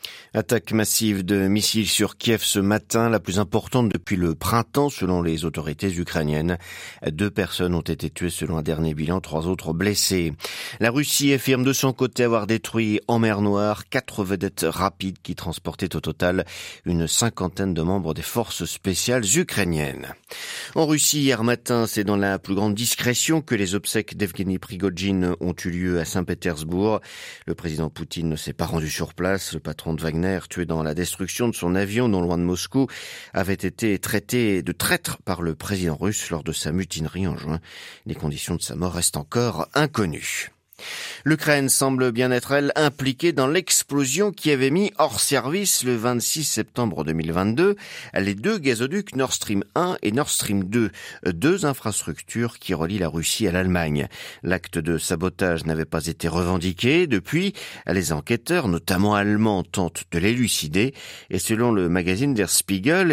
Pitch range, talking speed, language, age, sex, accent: 85-120 Hz, 170 wpm, French, 50-69, male, French